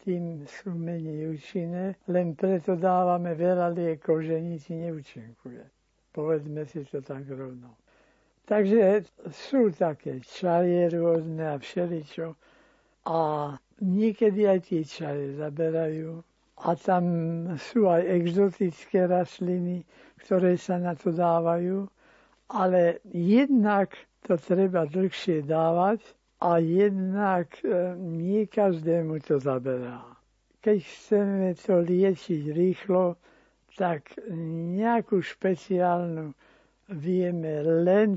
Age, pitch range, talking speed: 60-79, 160-185 Hz, 100 wpm